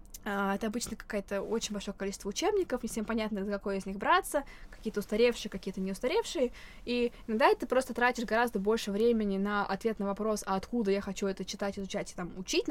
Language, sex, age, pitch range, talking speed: Russian, female, 20-39, 195-235 Hz, 205 wpm